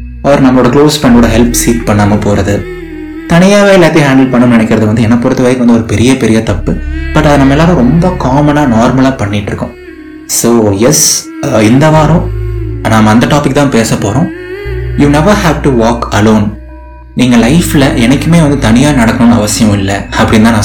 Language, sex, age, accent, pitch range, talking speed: Tamil, male, 20-39, native, 105-140 Hz, 165 wpm